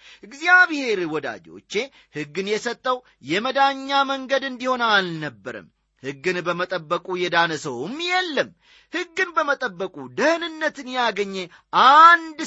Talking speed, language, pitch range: 80 wpm, Amharic, 160-260 Hz